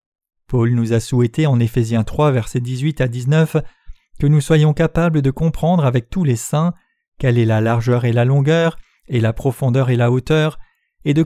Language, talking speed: French, 190 wpm